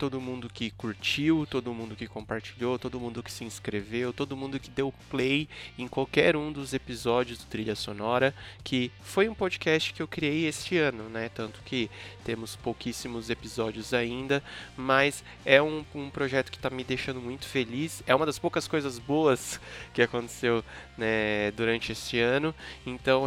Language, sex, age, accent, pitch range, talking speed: Portuguese, male, 20-39, Brazilian, 120-145 Hz, 170 wpm